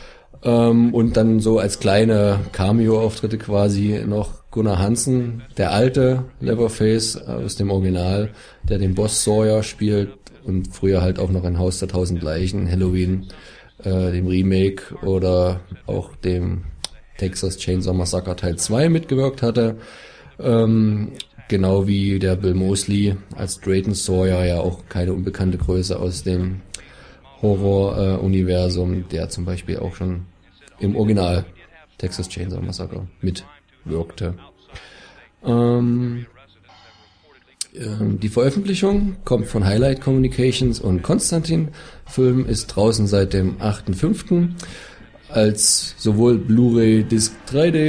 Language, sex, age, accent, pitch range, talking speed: German, male, 20-39, German, 95-120 Hz, 120 wpm